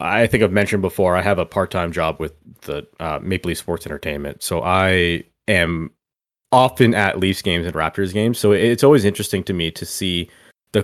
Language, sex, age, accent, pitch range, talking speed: English, male, 30-49, American, 95-125 Hz, 200 wpm